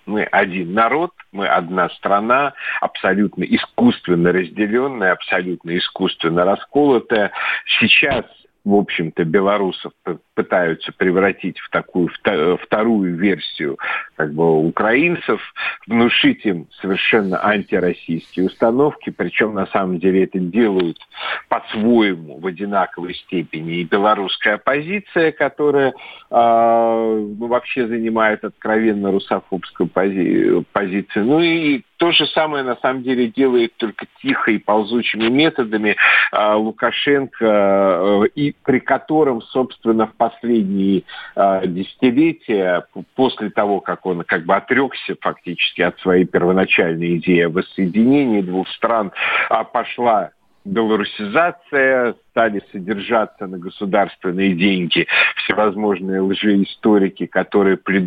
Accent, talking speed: native, 100 wpm